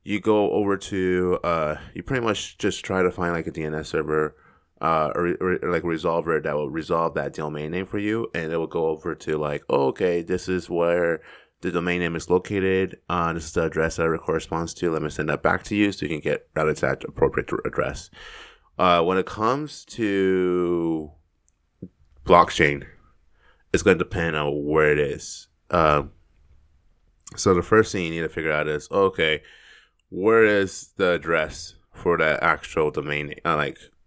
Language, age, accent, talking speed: English, 20-39, American, 185 wpm